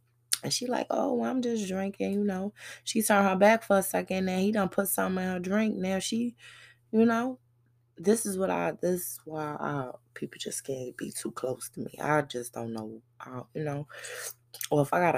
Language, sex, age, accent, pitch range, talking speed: English, female, 20-39, American, 135-210 Hz, 220 wpm